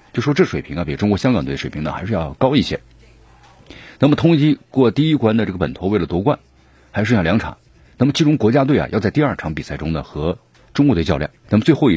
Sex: male